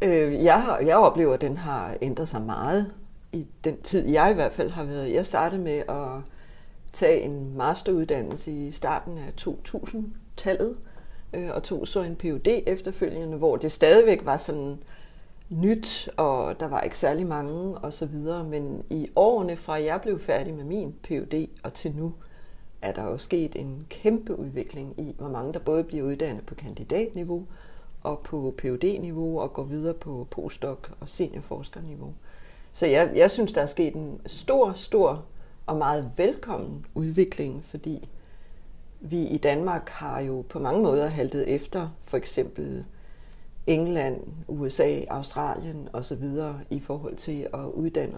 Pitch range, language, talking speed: 140-175 Hz, Danish, 155 wpm